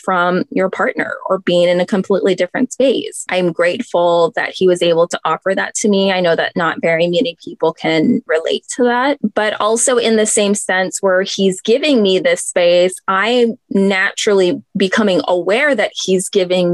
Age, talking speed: 20-39, 185 wpm